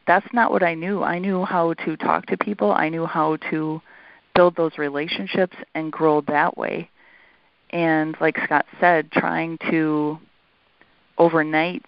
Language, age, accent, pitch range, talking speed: English, 30-49, American, 155-170 Hz, 150 wpm